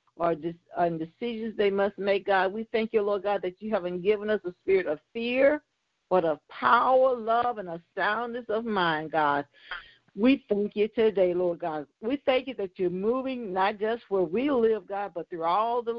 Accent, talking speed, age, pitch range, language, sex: American, 195 wpm, 50-69, 175-215 Hz, English, female